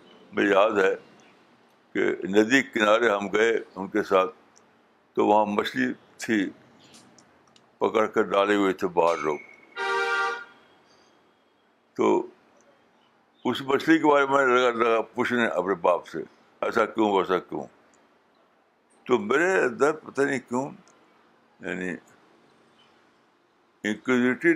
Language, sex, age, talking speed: Urdu, male, 60-79, 110 wpm